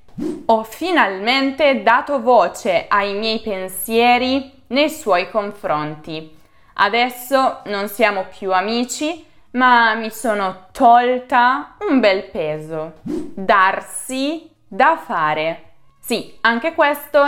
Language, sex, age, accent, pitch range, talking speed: Italian, female, 20-39, native, 180-255 Hz, 95 wpm